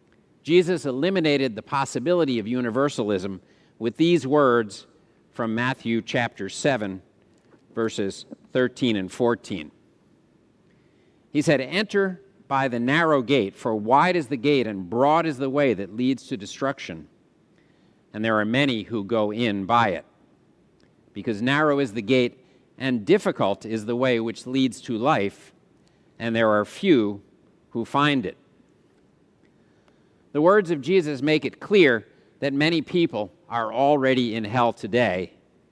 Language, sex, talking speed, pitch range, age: English, male, 140 wpm, 115-160 Hz, 50-69